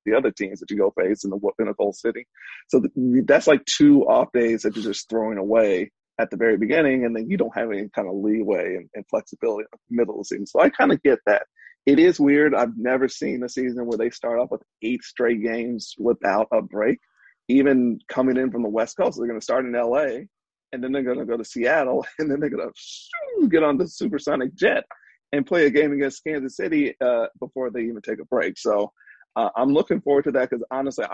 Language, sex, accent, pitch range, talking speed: English, male, American, 120-140 Hz, 240 wpm